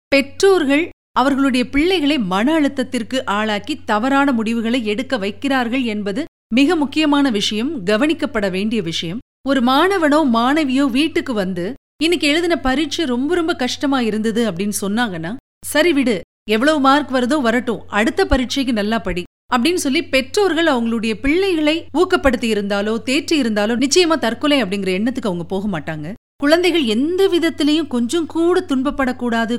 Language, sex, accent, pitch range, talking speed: Tamil, female, native, 220-300 Hz, 130 wpm